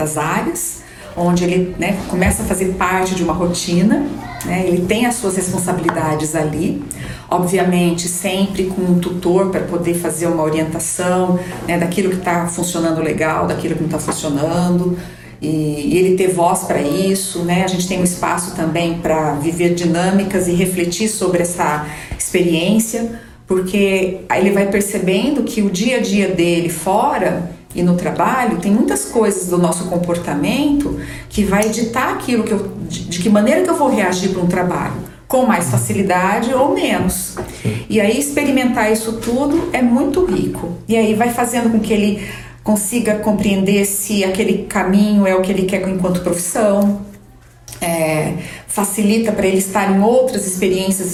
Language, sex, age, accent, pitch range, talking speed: Portuguese, female, 40-59, Brazilian, 175-210 Hz, 165 wpm